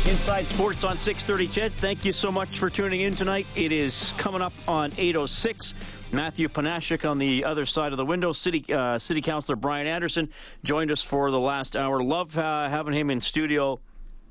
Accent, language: American, English